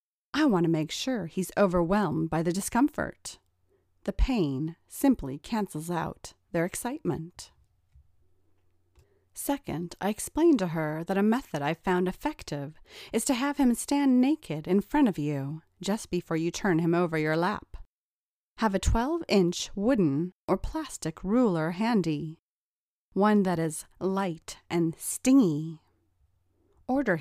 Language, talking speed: English, 135 wpm